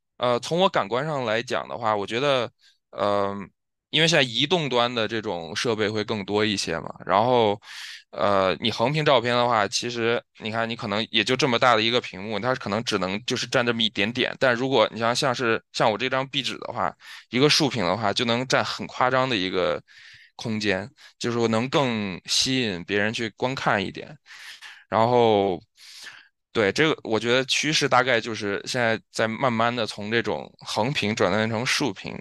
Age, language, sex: 20-39, Chinese, male